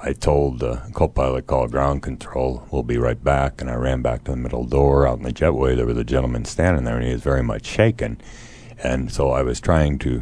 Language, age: English, 60-79